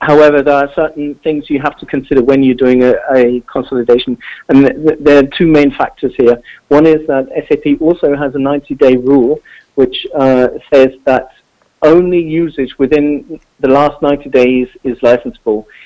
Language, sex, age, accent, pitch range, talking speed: English, male, 50-69, British, 125-145 Hz, 175 wpm